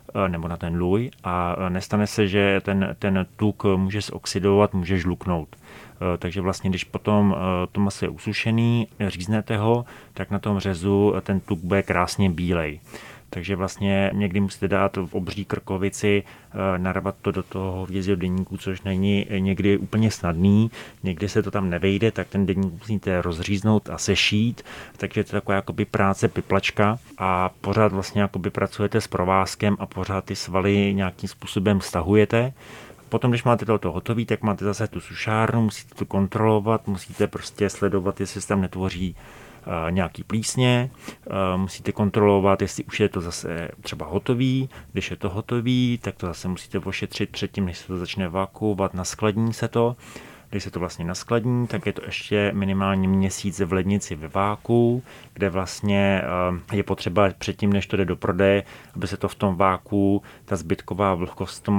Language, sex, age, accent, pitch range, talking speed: Czech, male, 30-49, native, 95-105 Hz, 165 wpm